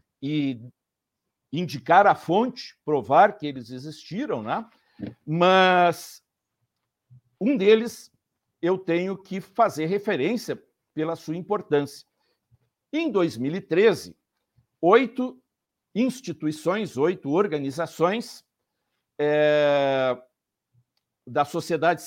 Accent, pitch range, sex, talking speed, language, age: Brazilian, 140-205 Hz, male, 80 wpm, Portuguese, 60-79